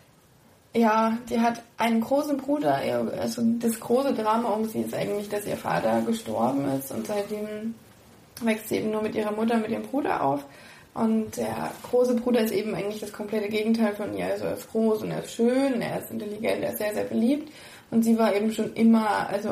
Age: 20-39